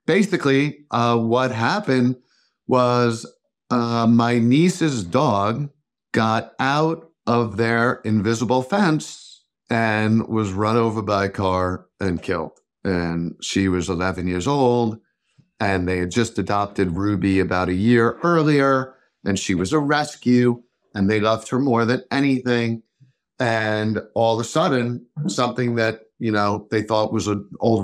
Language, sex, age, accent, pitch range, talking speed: English, male, 50-69, American, 110-140 Hz, 140 wpm